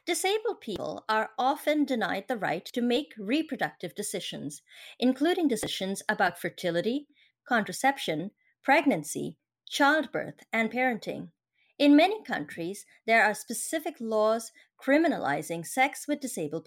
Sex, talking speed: female, 110 wpm